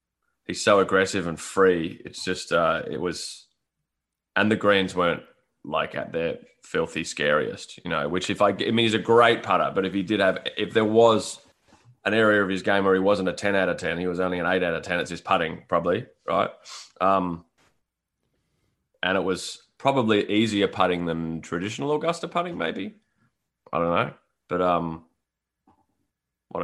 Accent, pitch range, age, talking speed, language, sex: Australian, 95-125 Hz, 20-39, 185 wpm, English, male